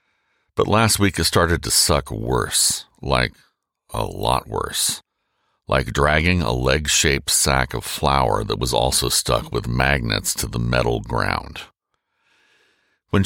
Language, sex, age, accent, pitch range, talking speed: English, male, 60-79, American, 70-95 Hz, 135 wpm